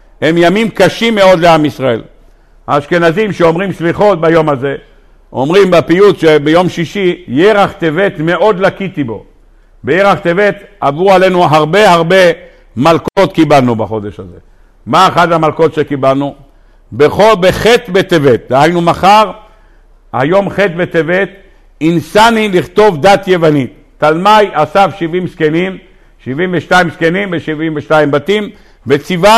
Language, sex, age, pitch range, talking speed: Hebrew, male, 60-79, 155-200 Hz, 115 wpm